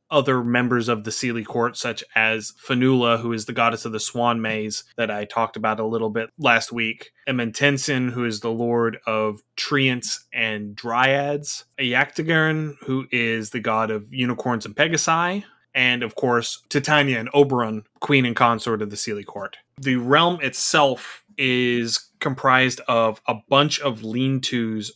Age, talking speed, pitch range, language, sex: 20-39, 165 wpm, 115-135 Hz, English, male